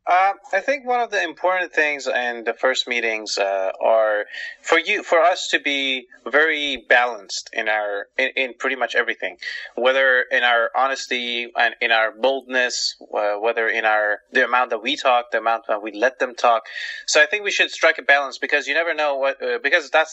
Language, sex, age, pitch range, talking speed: English, male, 30-49, 115-170 Hz, 205 wpm